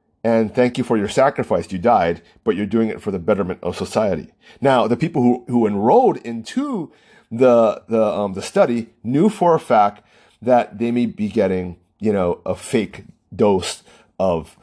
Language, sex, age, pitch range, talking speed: English, male, 40-59, 110-160 Hz, 180 wpm